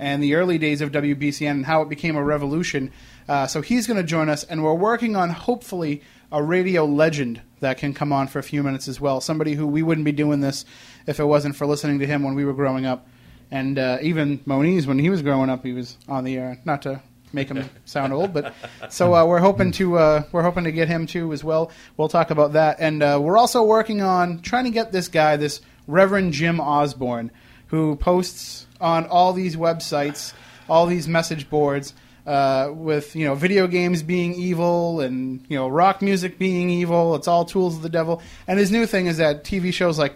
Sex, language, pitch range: male, English, 140-175 Hz